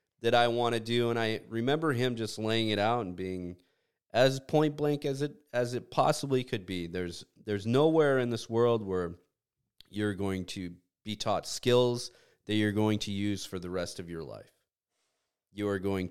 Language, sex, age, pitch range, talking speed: English, male, 30-49, 90-120 Hz, 195 wpm